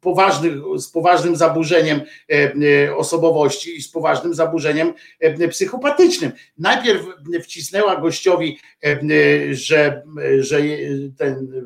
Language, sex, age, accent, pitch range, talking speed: Polish, male, 50-69, native, 135-165 Hz, 75 wpm